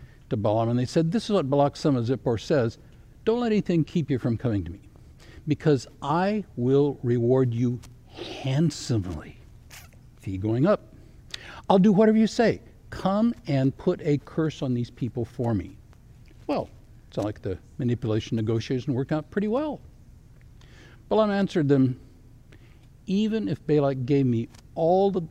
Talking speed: 155 wpm